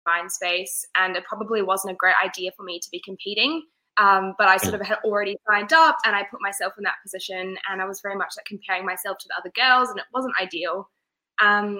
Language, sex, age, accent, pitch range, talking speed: English, female, 20-39, Australian, 190-215 Hz, 240 wpm